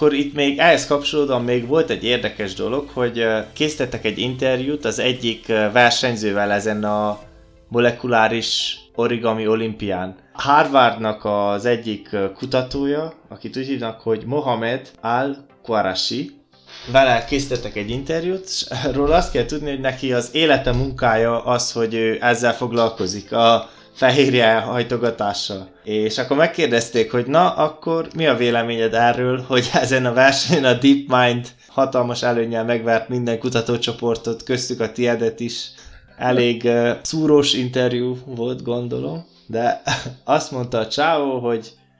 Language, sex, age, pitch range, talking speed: Hungarian, male, 20-39, 115-130 Hz, 130 wpm